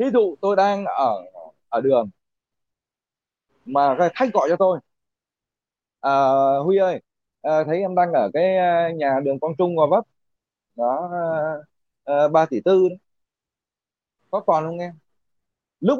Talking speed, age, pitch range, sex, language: 140 wpm, 20-39, 155-220 Hz, male, Vietnamese